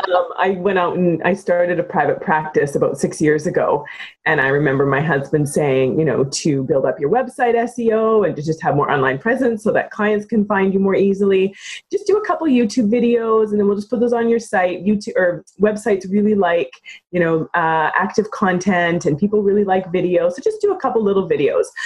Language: English